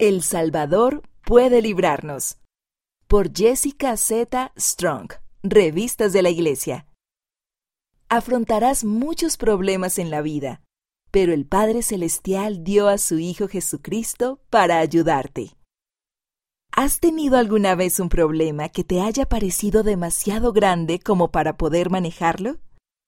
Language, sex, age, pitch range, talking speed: Spanish, female, 40-59, 175-225 Hz, 115 wpm